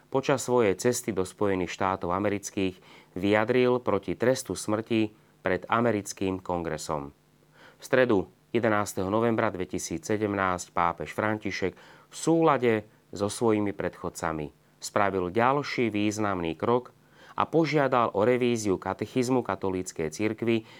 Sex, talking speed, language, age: male, 105 wpm, Slovak, 30-49